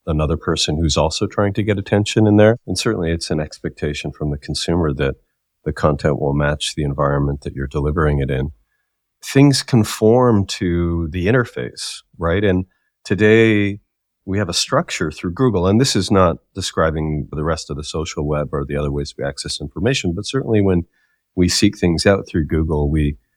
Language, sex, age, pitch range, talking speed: English, male, 40-59, 75-100 Hz, 185 wpm